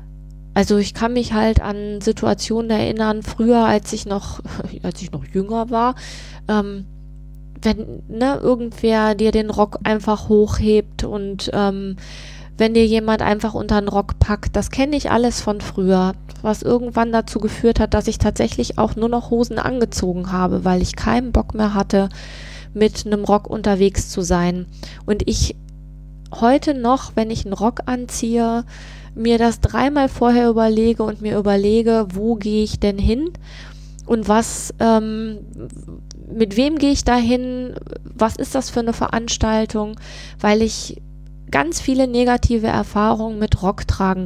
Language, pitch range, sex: German, 195-235 Hz, female